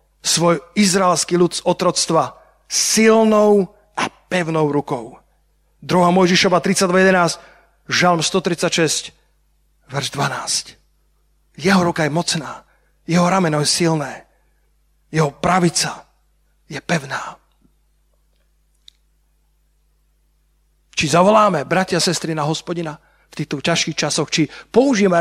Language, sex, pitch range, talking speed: Slovak, male, 170-220 Hz, 95 wpm